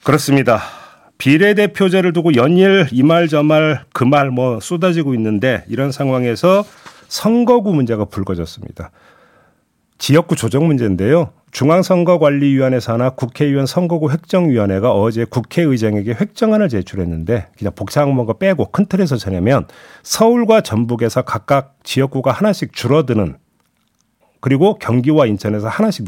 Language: Korean